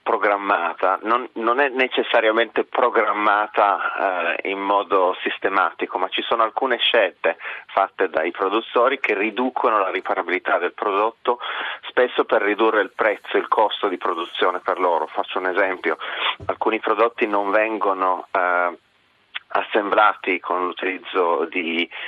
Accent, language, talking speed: native, Italian, 130 wpm